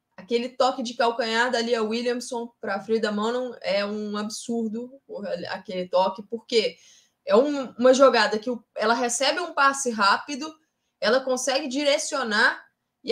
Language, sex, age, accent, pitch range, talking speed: Portuguese, female, 20-39, Brazilian, 225-280 Hz, 135 wpm